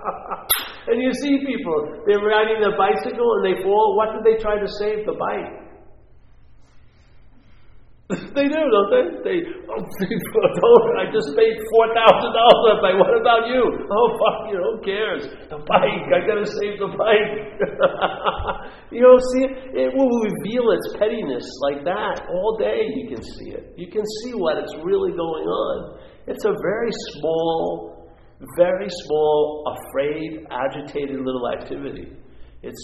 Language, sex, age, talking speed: English, male, 50-69, 150 wpm